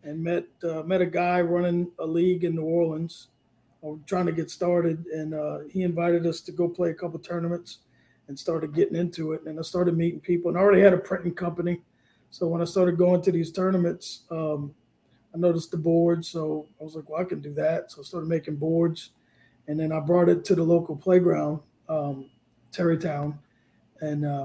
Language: English